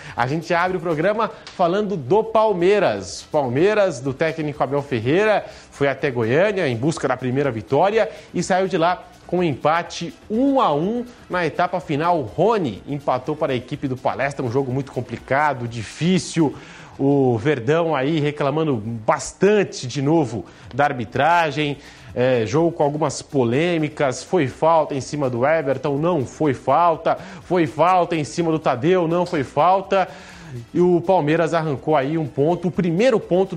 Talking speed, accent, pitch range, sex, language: 155 wpm, Brazilian, 140-175 Hz, male, Portuguese